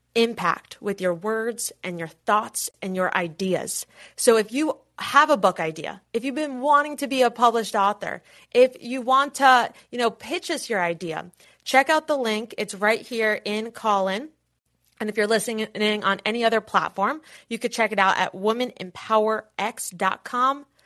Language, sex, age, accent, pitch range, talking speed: English, female, 30-49, American, 200-255 Hz, 175 wpm